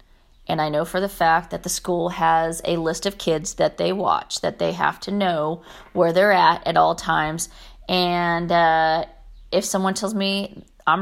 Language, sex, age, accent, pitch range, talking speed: English, female, 30-49, American, 165-205 Hz, 190 wpm